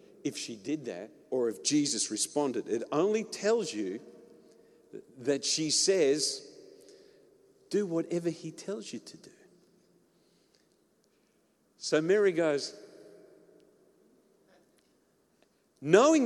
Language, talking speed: English, 95 wpm